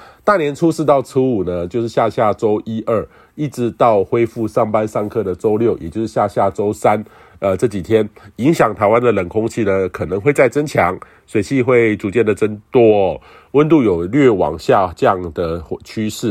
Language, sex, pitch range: Chinese, male, 100-130 Hz